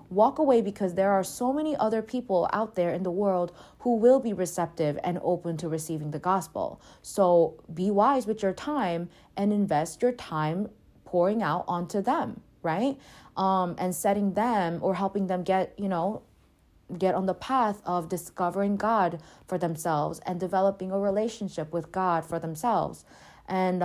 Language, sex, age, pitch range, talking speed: English, female, 20-39, 165-205 Hz, 170 wpm